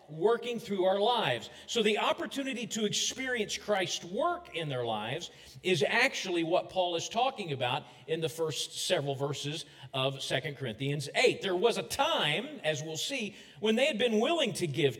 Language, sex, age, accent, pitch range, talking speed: English, male, 40-59, American, 155-230 Hz, 175 wpm